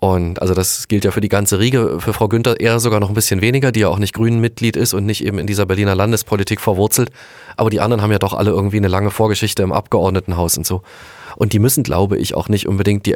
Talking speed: 255 wpm